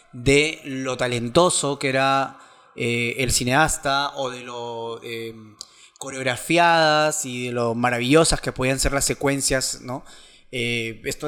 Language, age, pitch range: Spanish, 20-39, 130-160 Hz